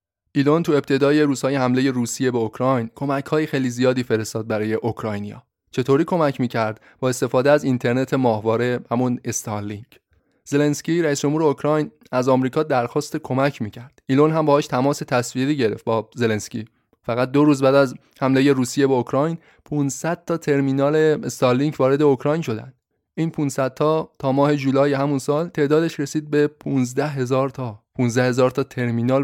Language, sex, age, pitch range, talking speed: Persian, male, 20-39, 125-145 Hz, 150 wpm